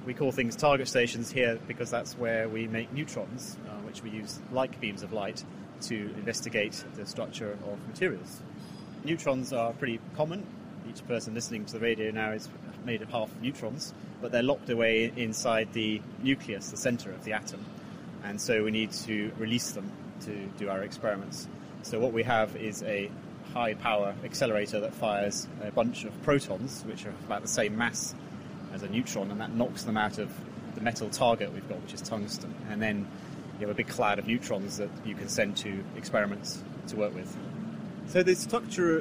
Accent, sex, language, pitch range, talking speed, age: British, male, English, 110-135 Hz, 190 wpm, 30-49